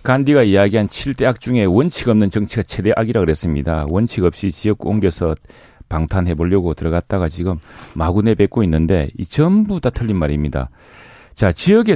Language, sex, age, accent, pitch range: Korean, male, 40-59, native, 95-130 Hz